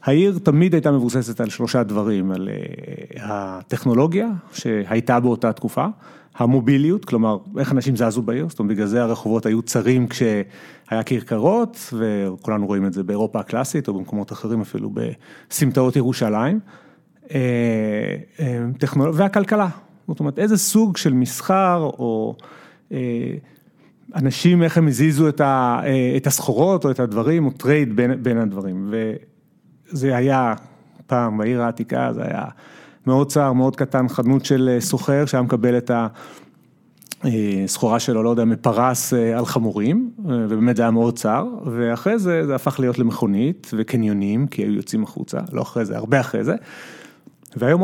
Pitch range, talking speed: 115-155 Hz, 145 wpm